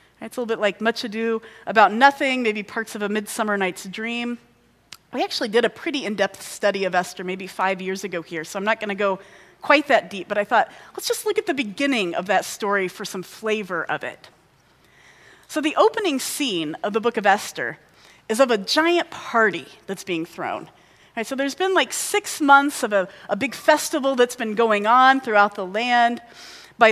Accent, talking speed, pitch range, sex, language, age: American, 205 wpm, 205-275 Hz, female, English, 30-49